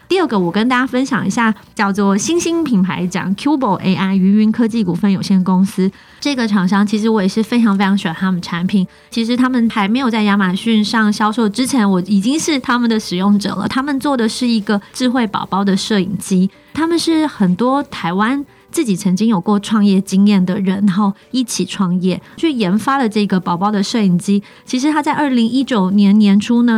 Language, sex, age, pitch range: Chinese, female, 30-49, 195-235 Hz